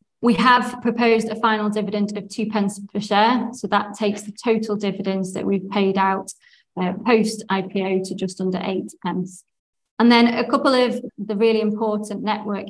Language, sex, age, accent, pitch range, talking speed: English, female, 20-39, British, 195-215 Hz, 180 wpm